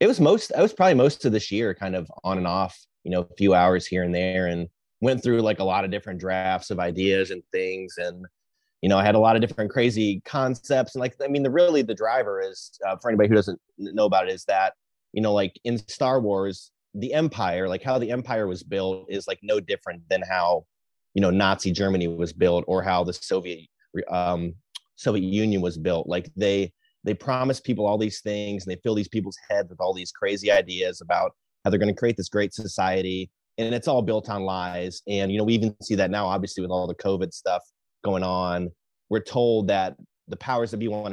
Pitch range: 95-115 Hz